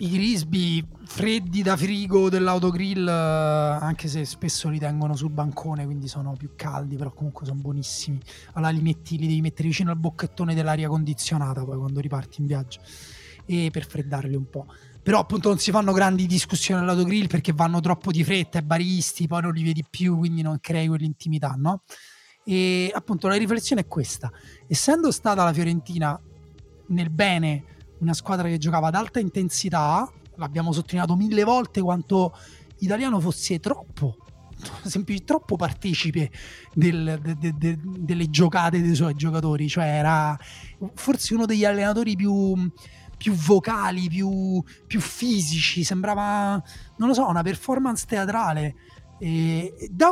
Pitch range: 155-190 Hz